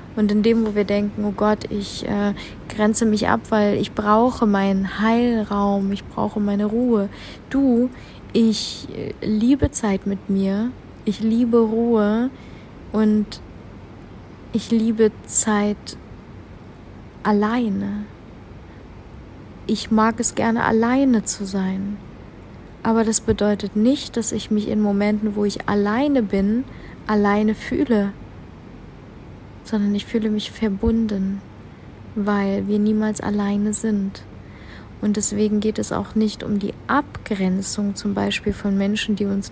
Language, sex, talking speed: German, female, 130 wpm